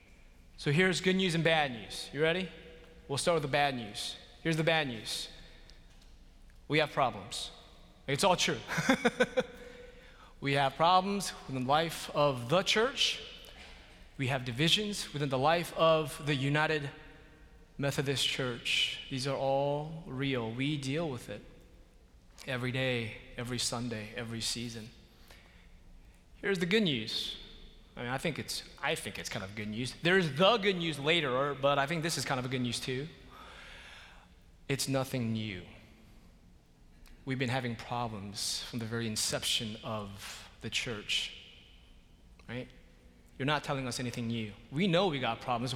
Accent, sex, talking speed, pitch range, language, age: American, male, 150 wpm, 120-165 Hz, English, 20-39